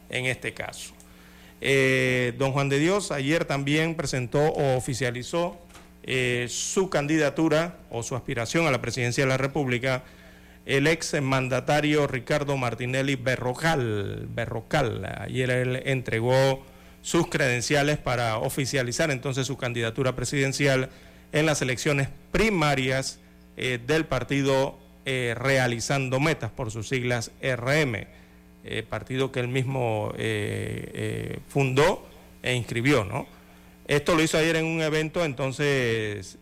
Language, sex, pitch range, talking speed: Spanish, male, 115-145 Hz, 125 wpm